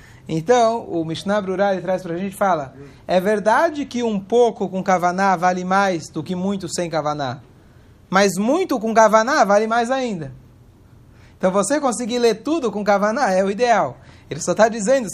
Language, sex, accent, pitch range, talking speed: Portuguese, male, Brazilian, 160-220 Hz, 180 wpm